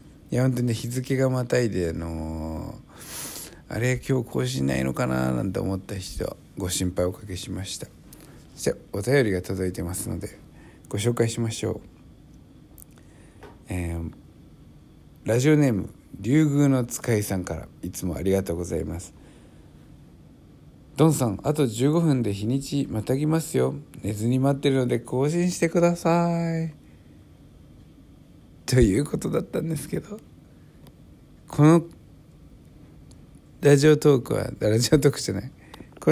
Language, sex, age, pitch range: Japanese, male, 60-79, 95-145 Hz